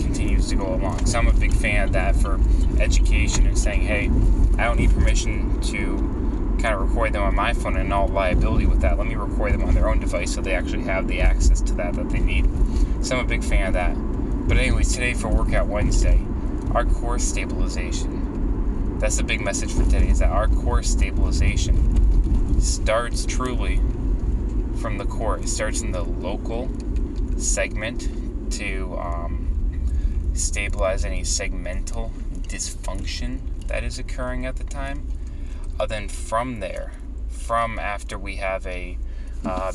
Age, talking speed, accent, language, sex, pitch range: 20-39, 170 wpm, American, English, male, 70-95 Hz